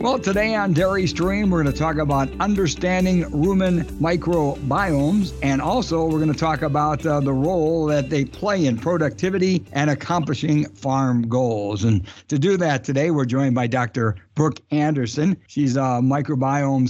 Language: English